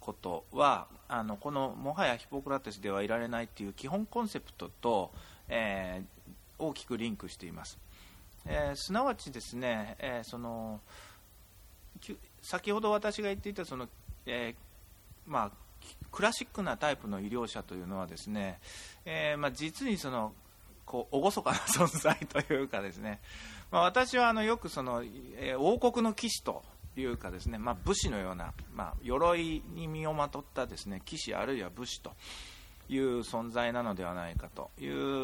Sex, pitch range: male, 95-155 Hz